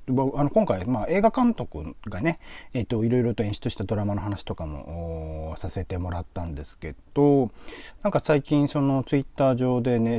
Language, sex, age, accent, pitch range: Japanese, male, 40-59, native, 95-140 Hz